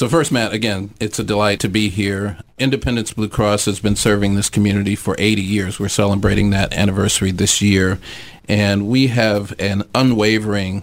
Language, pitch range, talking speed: English, 100-110 Hz, 175 wpm